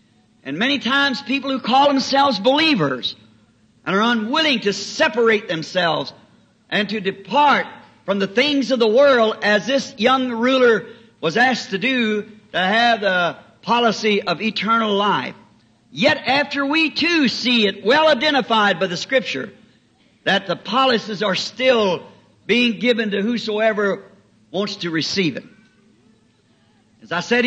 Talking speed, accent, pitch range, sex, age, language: 140 wpm, American, 210-255 Hz, male, 60-79, English